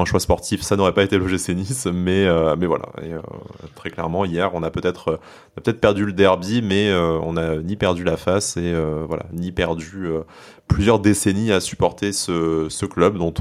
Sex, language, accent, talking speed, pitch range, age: male, French, French, 225 wpm, 85-100 Hz, 20-39